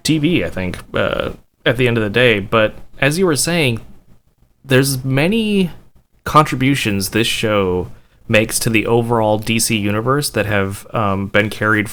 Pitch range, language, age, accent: 95-125 Hz, English, 20-39, American